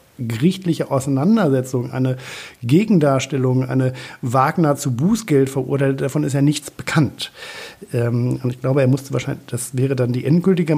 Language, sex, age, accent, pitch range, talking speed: German, male, 50-69, German, 125-145 Hz, 145 wpm